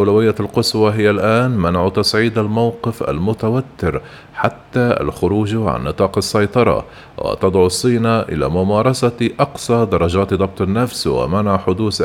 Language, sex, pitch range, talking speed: Arabic, male, 95-115 Hz, 115 wpm